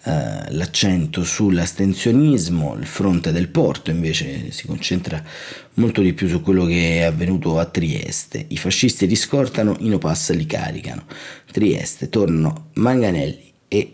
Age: 30-49